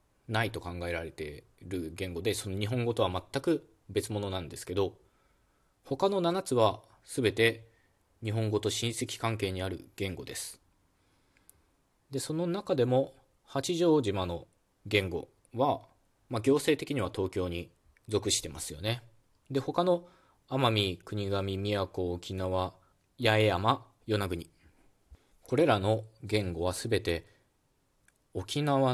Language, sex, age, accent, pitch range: Japanese, male, 20-39, native, 90-115 Hz